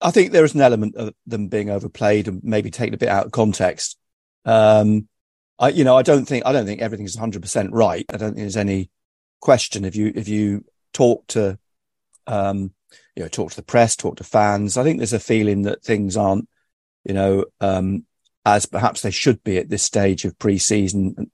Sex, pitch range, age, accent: male, 100-120 Hz, 50-69, British